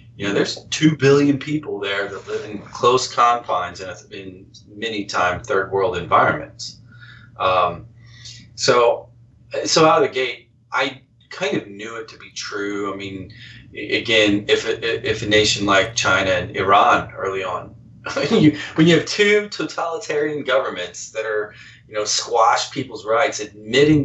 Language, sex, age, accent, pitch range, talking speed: English, male, 30-49, American, 100-125 Hz, 155 wpm